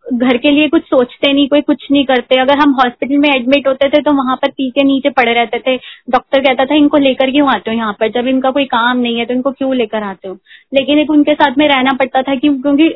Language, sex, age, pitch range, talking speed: Hindi, female, 20-39, 260-295 Hz, 270 wpm